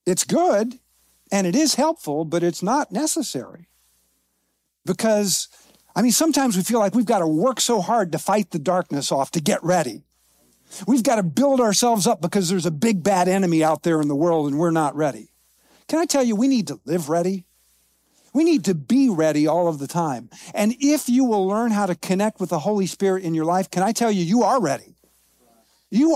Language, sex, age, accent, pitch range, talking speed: English, male, 50-69, American, 170-245 Hz, 215 wpm